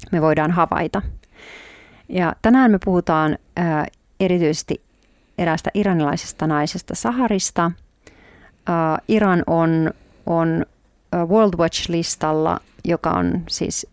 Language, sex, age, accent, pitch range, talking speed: Finnish, female, 40-59, native, 155-185 Hz, 95 wpm